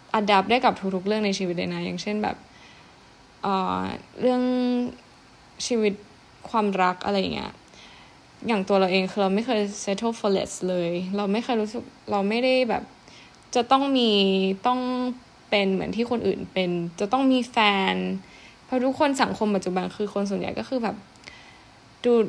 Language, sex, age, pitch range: Thai, female, 10-29, 195-240 Hz